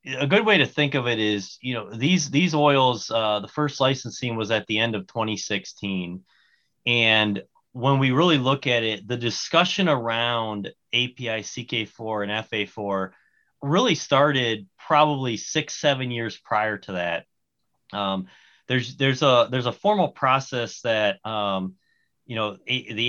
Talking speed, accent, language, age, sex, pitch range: 155 wpm, American, English, 30-49, male, 110-135 Hz